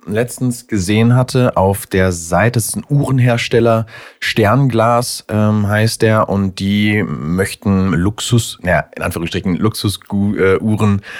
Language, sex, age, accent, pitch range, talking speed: German, male, 30-49, German, 95-115 Hz, 120 wpm